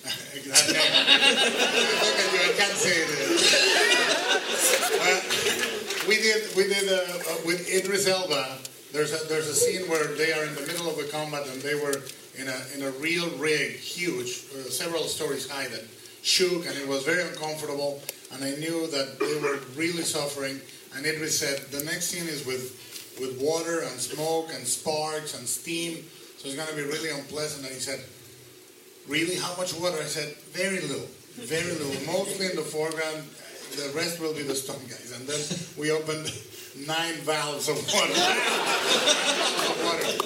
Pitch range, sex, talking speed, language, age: 145-180 Hz, male, 170 wpm, English, 30-49